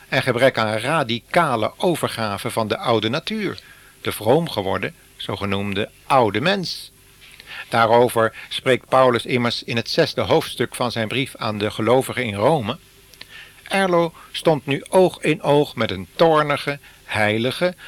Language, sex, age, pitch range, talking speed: Dutch, male, 60-79, 115-145 Hz, 140 wpm